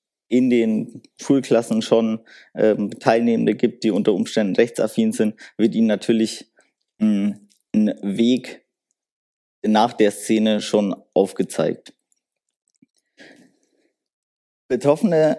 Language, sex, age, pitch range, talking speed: German, male, 20-39, 105-130 Hz, 95 wpm